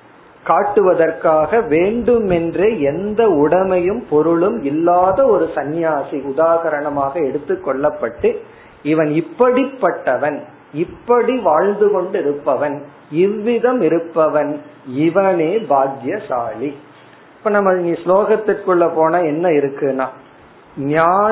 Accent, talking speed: native, 75 wpm